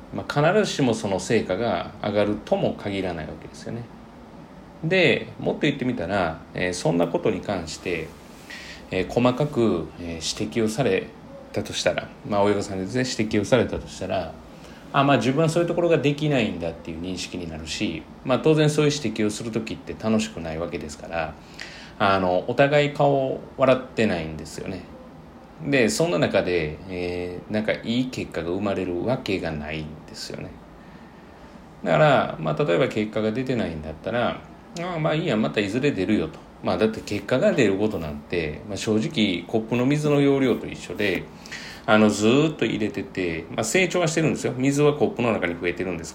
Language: Japanese